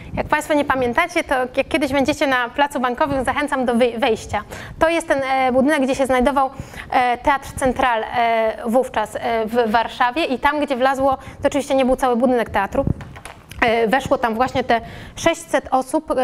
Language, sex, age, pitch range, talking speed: Polish, female, 20-39, 245-285 Hz, 160 wpm